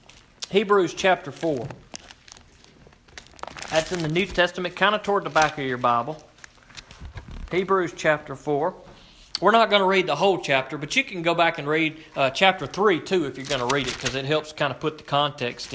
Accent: American